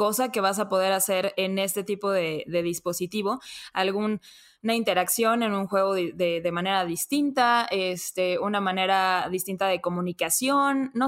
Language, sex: Spanish, female